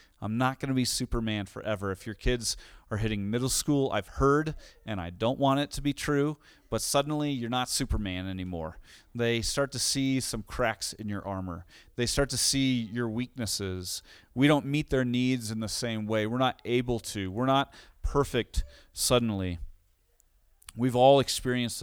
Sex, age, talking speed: male, 30-49, 180 wpm